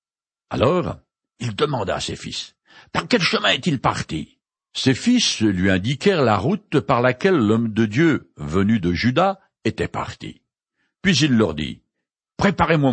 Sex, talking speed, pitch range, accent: male, 150 wpm, 110-165 Hz, French